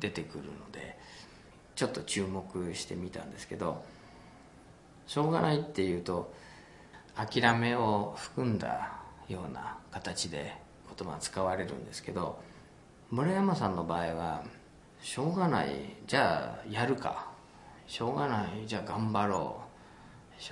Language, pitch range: Japanese, 90-115 Hz